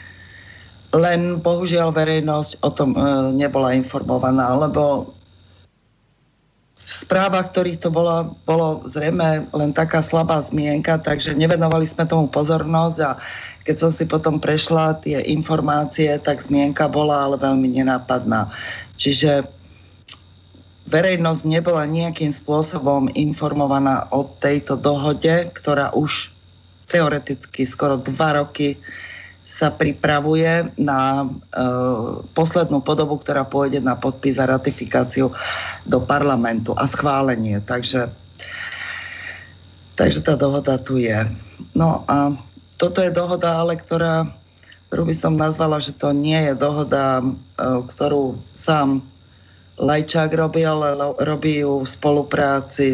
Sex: female